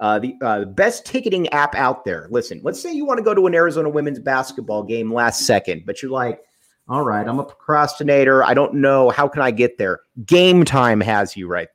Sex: male